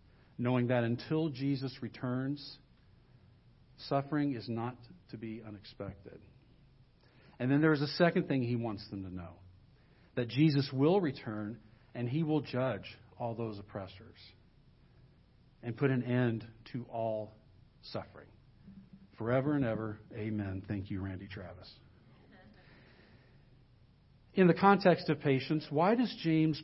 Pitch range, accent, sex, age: 110-145 Hz, American, male, 50-69